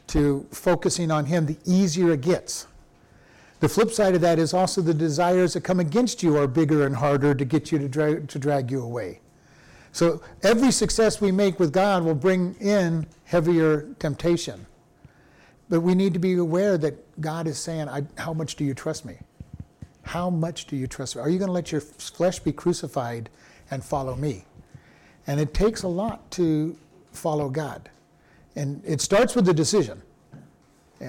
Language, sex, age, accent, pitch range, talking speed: English, male, 50-69, American, 155-180 Hz, 185 wpm